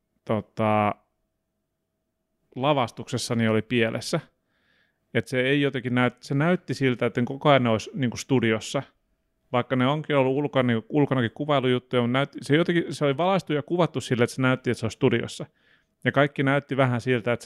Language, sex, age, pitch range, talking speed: Finnish, male, 30-49, 115-135 Hz, 170 wpm